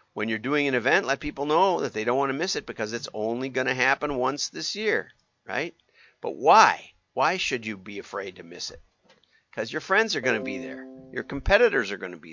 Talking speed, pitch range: 240 wpm, 115-155 Hz